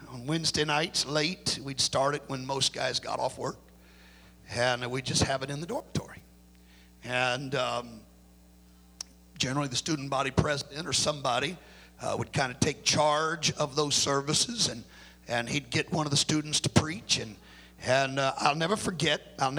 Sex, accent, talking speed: male, American, 170 wpm